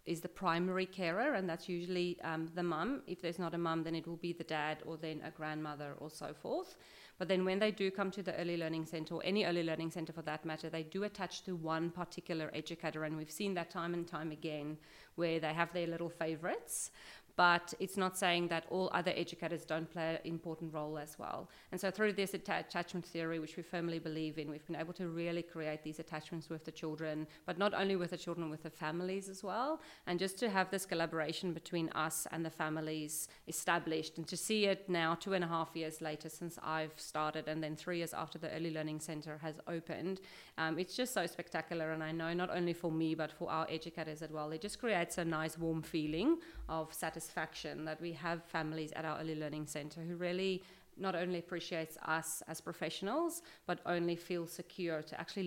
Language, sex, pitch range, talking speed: English, female, 160-175 Hz, 220 wpm